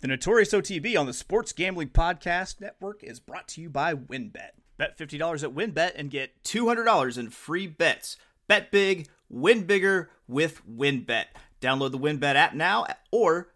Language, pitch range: English, 135-175 Hz